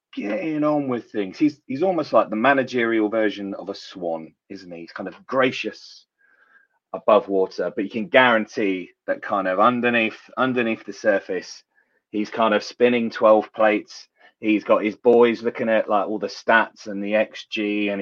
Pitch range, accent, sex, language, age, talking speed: 105-125 Hz, British, male, English, 30-49, 175 wpm